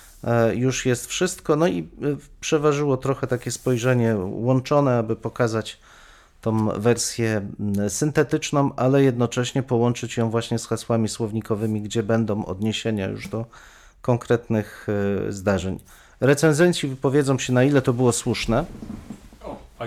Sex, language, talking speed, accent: male, Polish, 120 wpm, native